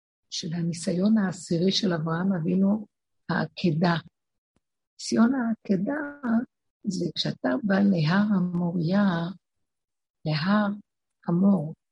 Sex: female